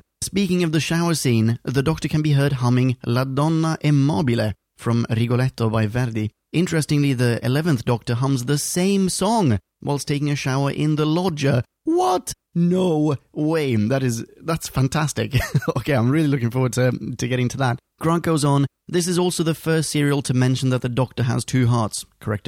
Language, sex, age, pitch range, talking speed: English, male, 30-49, 120-165 Hz, 180 wpm